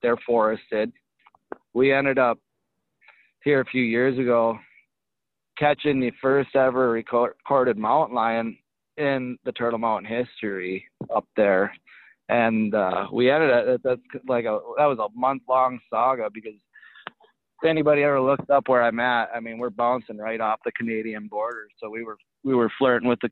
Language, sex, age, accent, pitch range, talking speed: English, male, 20-39, American, 115-135 Hz, 160 wpm